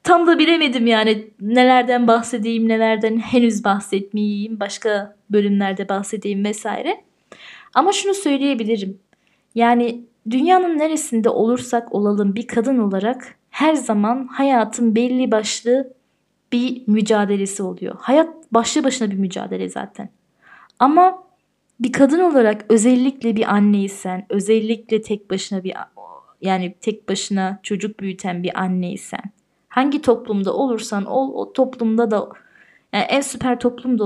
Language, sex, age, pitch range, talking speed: Turkish, female, 20-39, 205-250 Hz, 120 wpm